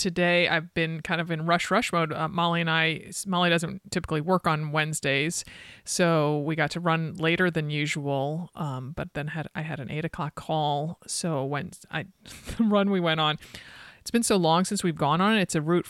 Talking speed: 210 wpm